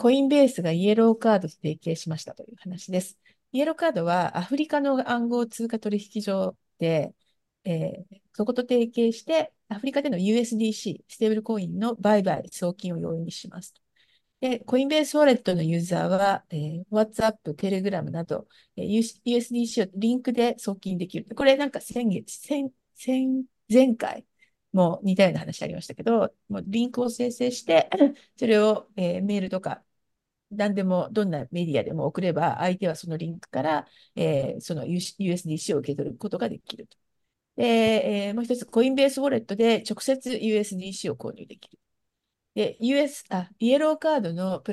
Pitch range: 185-240 Hz